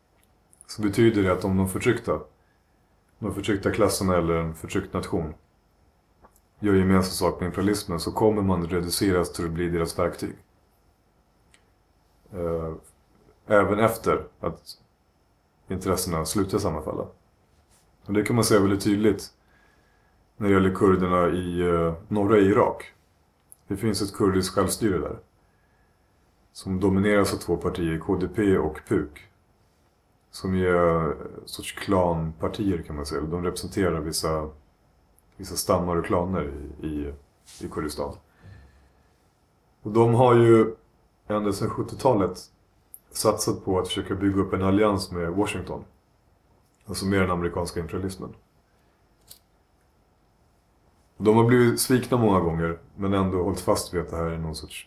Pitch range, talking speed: 85-105 Hz, 130 wpm